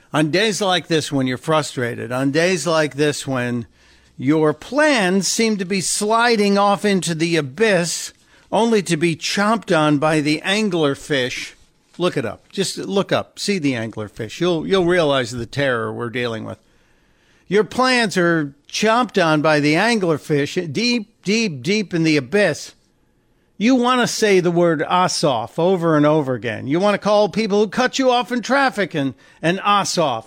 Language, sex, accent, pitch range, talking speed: English, male, American, 140-200 Hz, 170 wpm